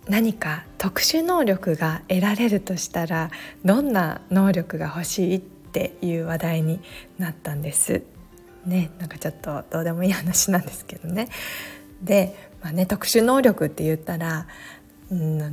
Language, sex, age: Japanese, female, 20-39